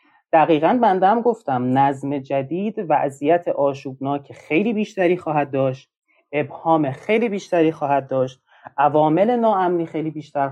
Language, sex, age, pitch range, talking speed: Persian, male, 30-49, 135-190 Hz, 125 wpm